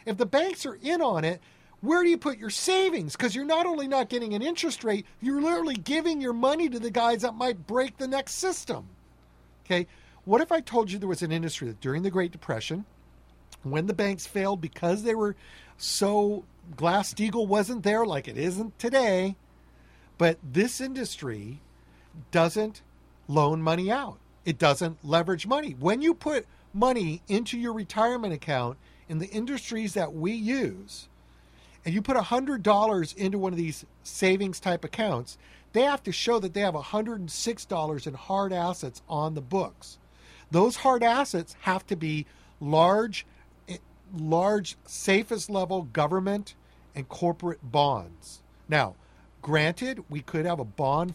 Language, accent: English, American